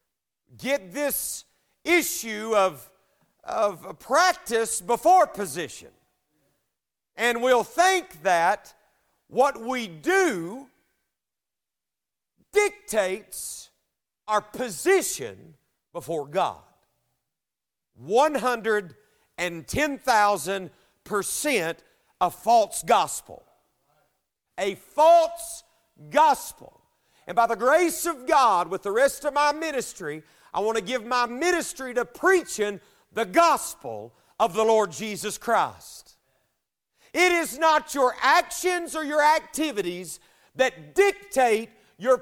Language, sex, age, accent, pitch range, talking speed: English, male, 50-69, American, 220-340 Hz, 90 wpm